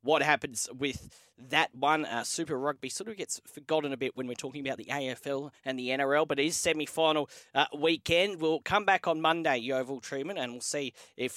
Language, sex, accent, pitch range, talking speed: English, male, Australian, 125-165 Hz, 210 wpm